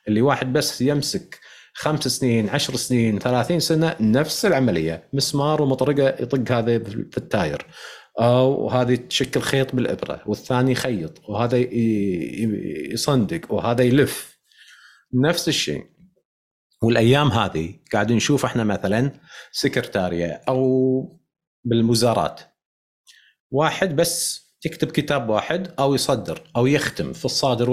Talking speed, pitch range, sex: 110 wpm, 110-155 Hz, male